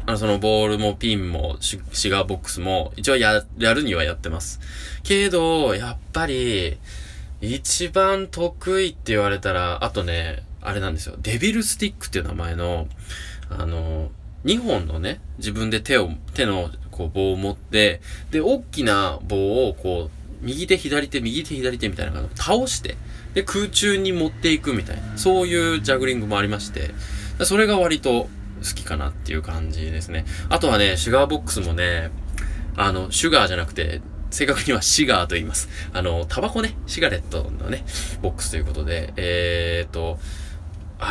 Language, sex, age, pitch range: Japanese, male, 20-39, 80-130 Hz